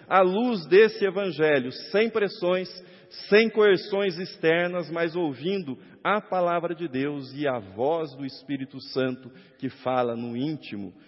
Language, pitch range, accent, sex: Portuguese, 120-170 Hz, Brazilian, male